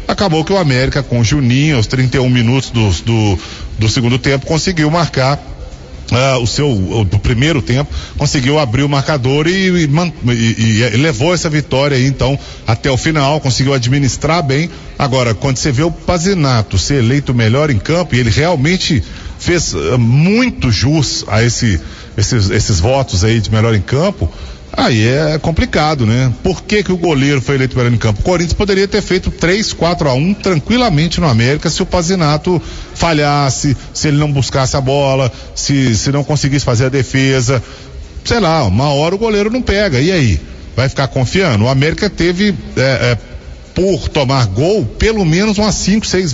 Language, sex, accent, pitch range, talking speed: Portuguese, male, Brazilian, 115-160 Hz, 175 wpm